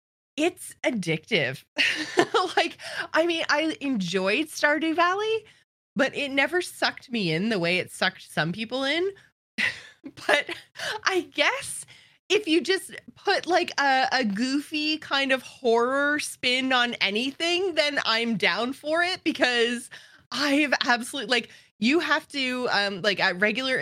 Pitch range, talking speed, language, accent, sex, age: 230-330 Hz, 140 wpm, English, American, female, 20-39